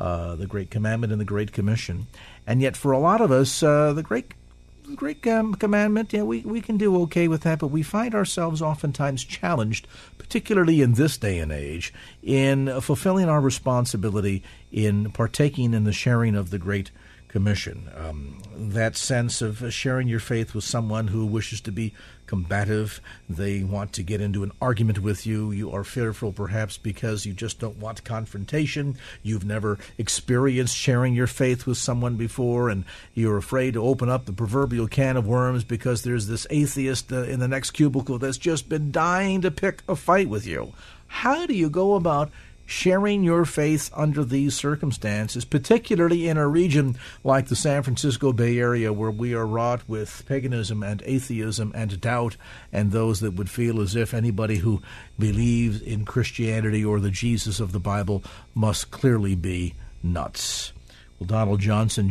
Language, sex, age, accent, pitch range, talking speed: English, male, 50-69, American, 105-140 Hz, 175 wpm